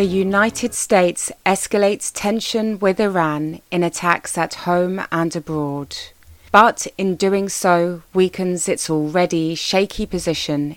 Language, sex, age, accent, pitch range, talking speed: English, female, 30-49, British, 145-175 Hz, 125 wpm